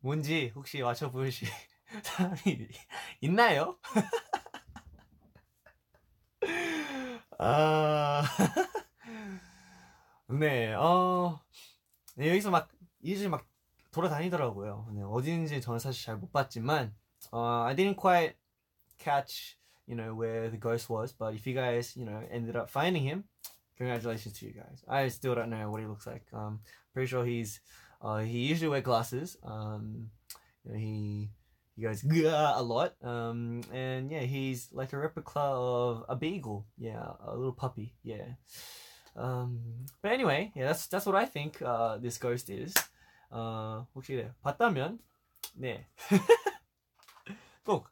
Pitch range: 115-165 Hz